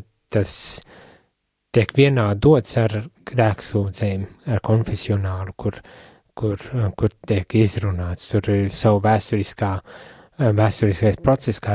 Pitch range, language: 105-120 Hz, English